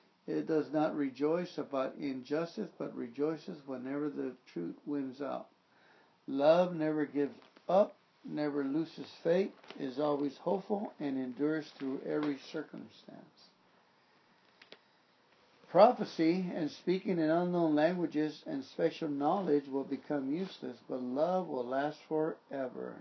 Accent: American